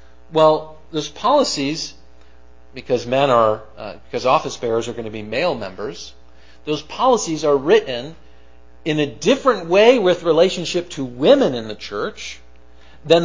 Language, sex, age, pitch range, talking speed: English, male, 50-69, 115-165 Hz, 145 wpm